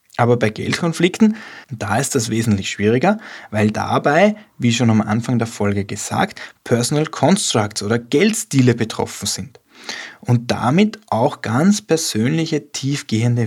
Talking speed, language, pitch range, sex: 130 wpm, German, 115-175 Hz, male